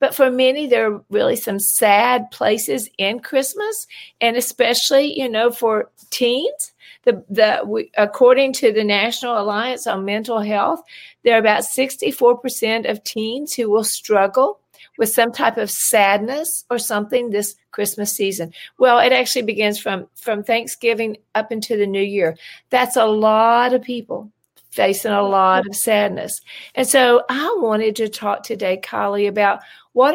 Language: English